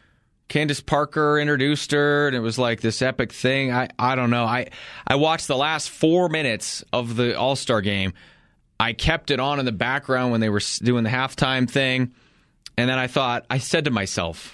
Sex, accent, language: male, American, English